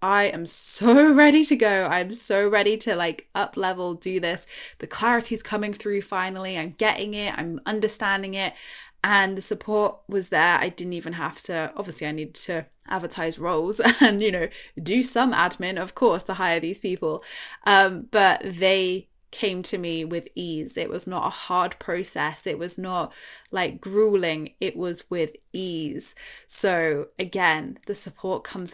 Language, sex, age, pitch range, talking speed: English, female, 10-29, 175-215 Hz, 175 wpm